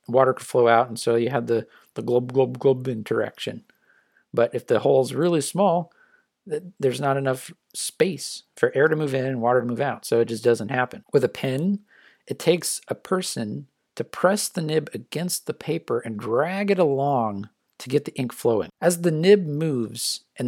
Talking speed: 195 wpm